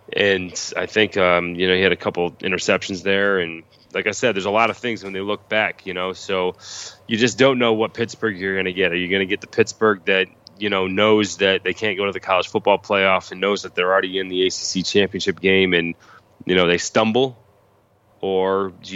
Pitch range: 90-100 Hz